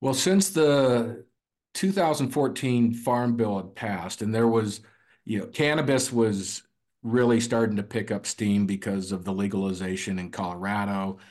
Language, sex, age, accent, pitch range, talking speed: English, male, 50-69, American, 95-120 Hz, 145 wpm